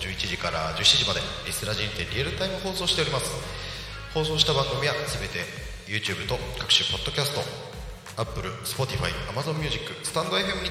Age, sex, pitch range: 40-59, male, 85-135 Hz